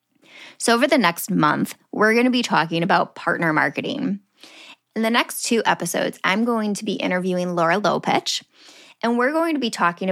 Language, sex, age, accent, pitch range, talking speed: English, female, 10-29, American, 170-230 Hz, 185 wpm